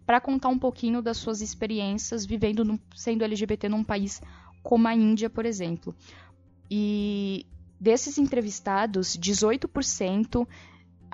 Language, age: Portuguese, 10-29